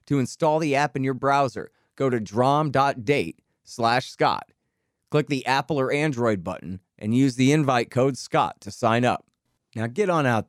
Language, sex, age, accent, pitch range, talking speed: English, male, 30-49, American, 125-175 Hz, 175 wpm